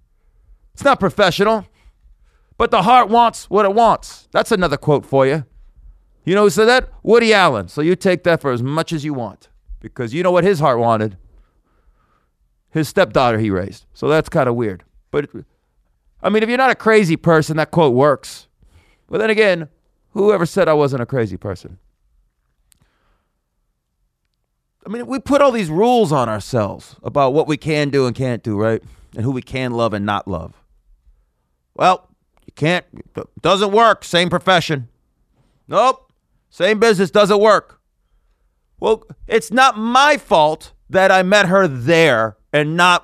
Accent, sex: American, male